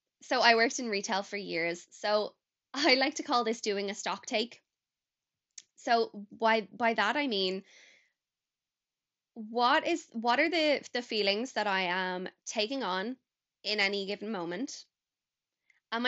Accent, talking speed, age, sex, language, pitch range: Irish, 150 wpm, 10-29, female, English, 200-240 Hz